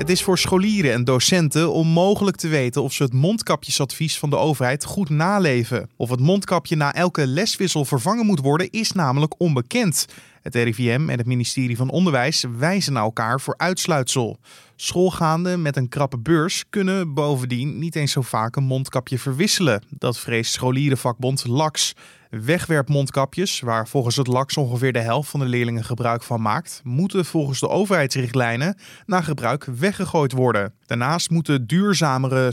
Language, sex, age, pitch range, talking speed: Dutch, male, 20-39, 130-180 Hz, 155 wpm